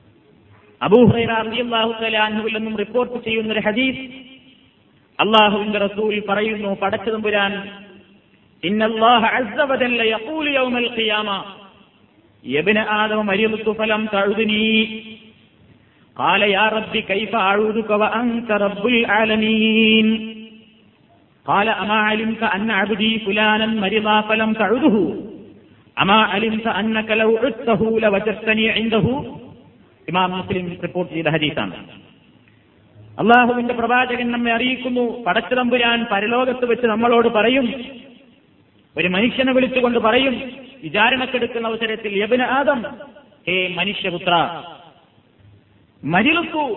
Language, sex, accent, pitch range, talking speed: Malayalam, male, native, 200-240 Hz, 100 wpm